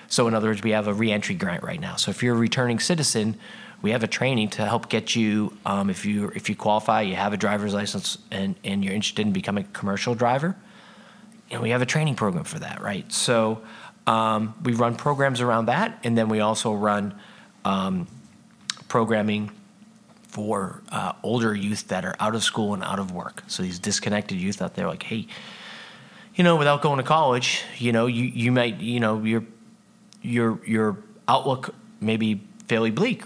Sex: male